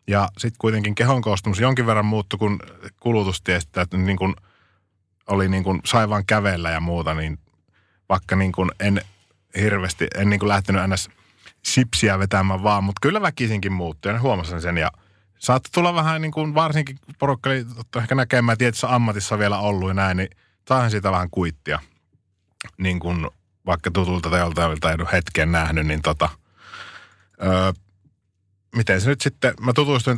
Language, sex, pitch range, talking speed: Finnish, male, 95-115 Hz, 155 wpm